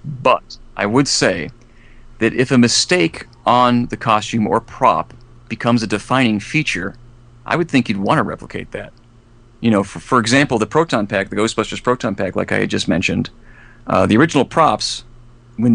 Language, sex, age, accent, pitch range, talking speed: English, male, 40-59, American, 105-120 Hz, 175 wpm